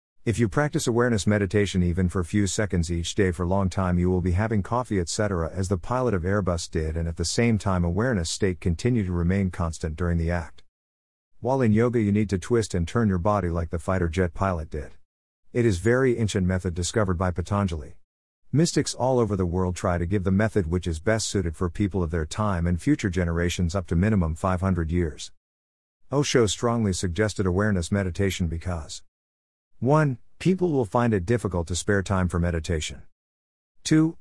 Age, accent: 50-69, American